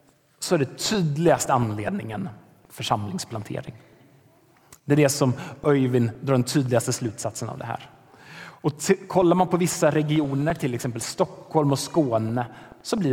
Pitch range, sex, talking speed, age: 130-175 Hz, male, 140 wpm, 30-49